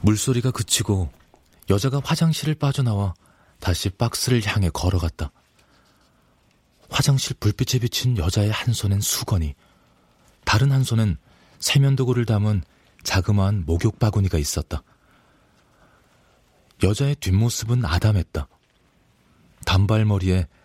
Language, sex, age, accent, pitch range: Korean, male, 40-59, native, 85-120 Hz